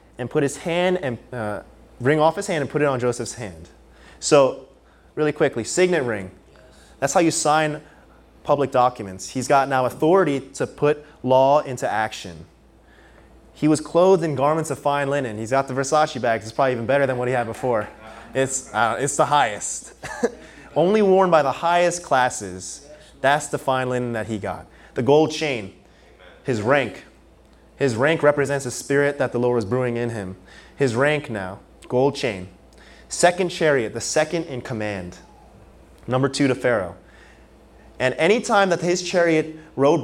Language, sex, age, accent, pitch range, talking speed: English, male, 20-39, American, 110-150 Hz, 170 wpm